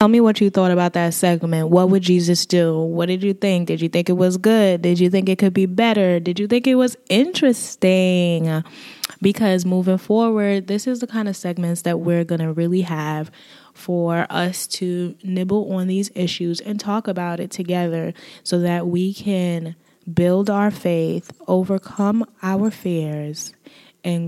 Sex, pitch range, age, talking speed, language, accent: female, 175-205 Hz, 20-39, 180 wpm, English, American